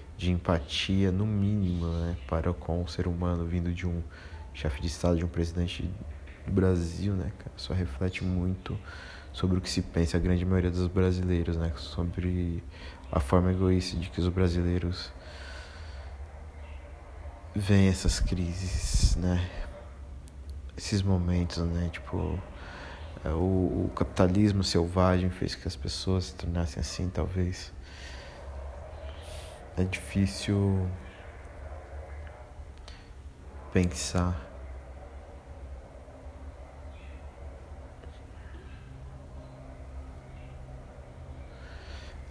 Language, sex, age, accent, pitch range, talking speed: Portuguese, male, 20-39, Brazilian, 75-90 Hz, 100 wpm